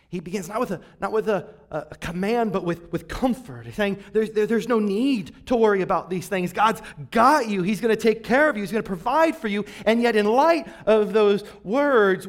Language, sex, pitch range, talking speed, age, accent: English, male, 150-220 Hz, 235 wpm, 30-49, American